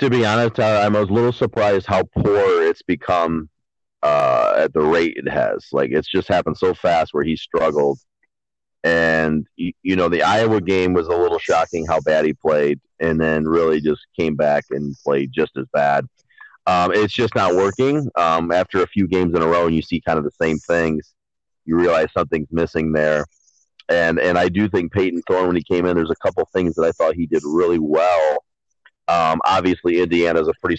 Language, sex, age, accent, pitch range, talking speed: English, male, 30-49, American, 80-125 Hz, 205 wpm